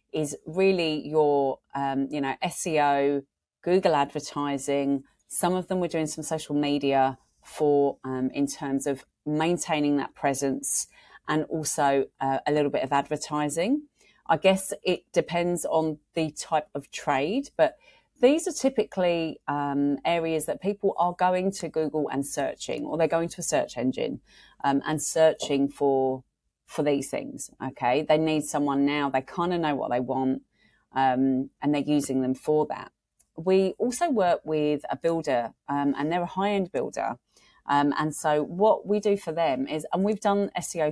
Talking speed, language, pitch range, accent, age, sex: 165 wpm, English, 140-170 Hz, British, 30-49, female